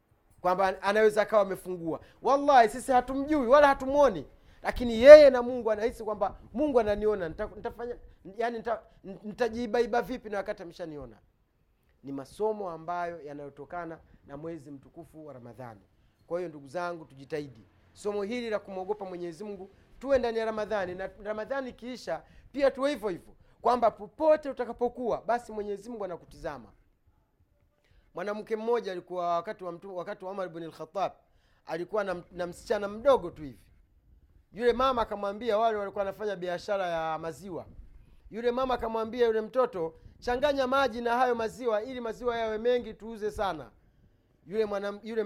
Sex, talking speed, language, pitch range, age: male, 140 wpm, Swahili, 170-235 Hz, 30-49